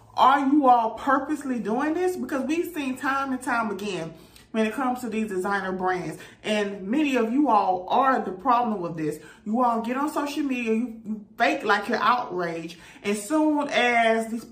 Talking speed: 185 wpm